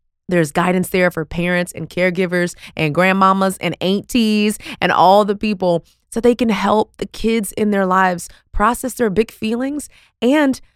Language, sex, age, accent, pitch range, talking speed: English, female, 20-39, American, 175-220 Hz, 160 wpm